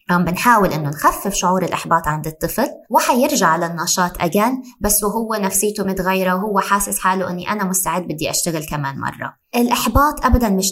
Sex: female